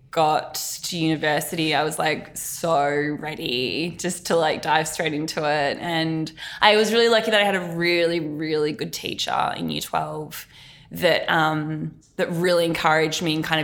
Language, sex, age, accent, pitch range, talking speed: English, female, 20-39, Australian, 155-185 Hz, 170 wpm